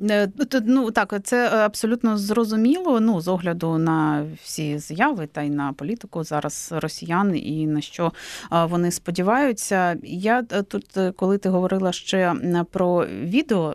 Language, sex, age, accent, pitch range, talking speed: Ukrainian, female, 30-49, native, 170-220 Hz, 130 wpm